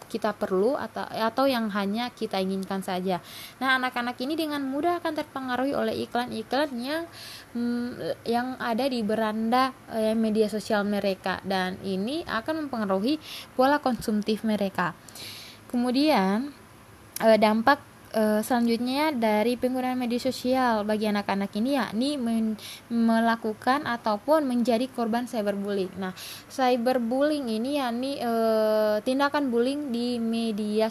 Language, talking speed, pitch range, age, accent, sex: Indonesian, 115 wpm, 205-260 Hz, 20-39, native, female